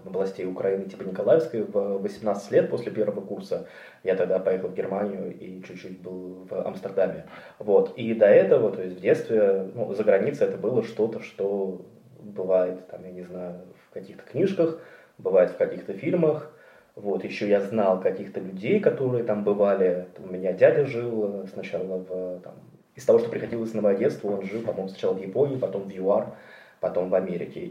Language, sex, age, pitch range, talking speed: Russian, male, 20-39, 95-125 Hz, 180 wpm